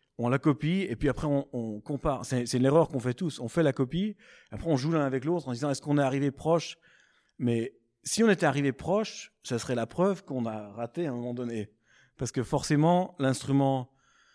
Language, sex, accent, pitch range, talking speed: French, male, French, 120-150 Hz, 225 wpm